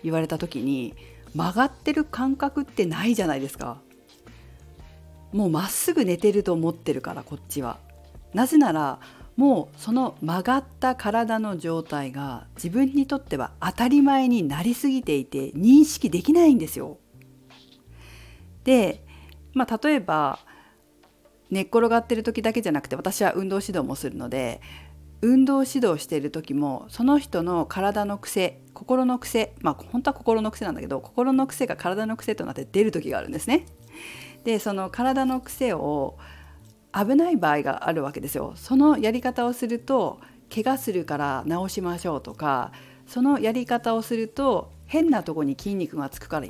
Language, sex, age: Japanese, female, 50-69